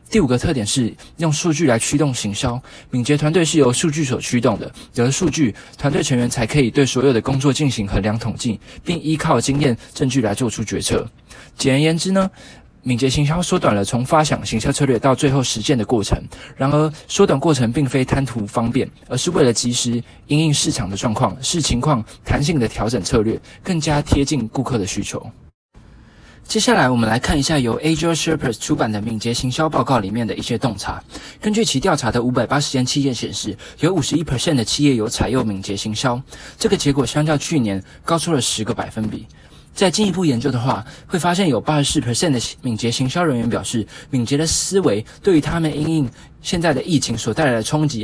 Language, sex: Chinese, male